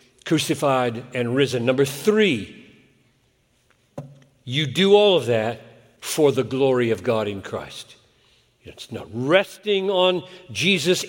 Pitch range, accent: 125-185 Hz, American